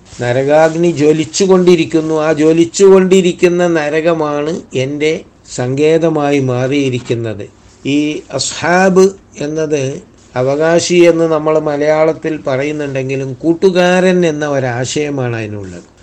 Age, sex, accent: 60-79, male, native